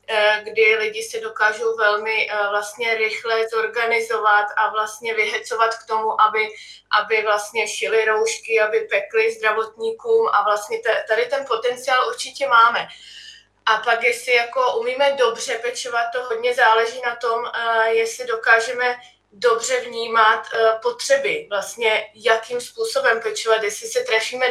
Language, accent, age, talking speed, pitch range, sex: Czech, native, 20-39, 125 wpm, 215-235 Hz, female